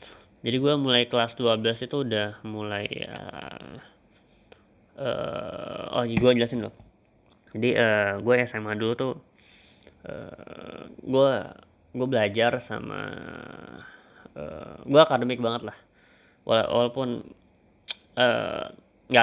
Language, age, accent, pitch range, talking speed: Indonesian, 20-39, native, 105-130 Hz, 95 wpm